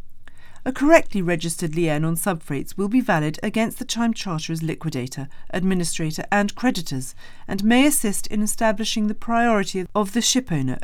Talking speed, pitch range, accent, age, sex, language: 150 wpm, 150-210 Hz, British, 40-59, female, English